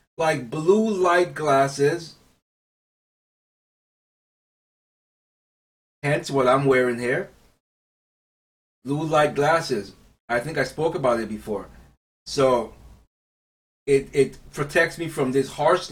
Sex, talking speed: male, 100 wpm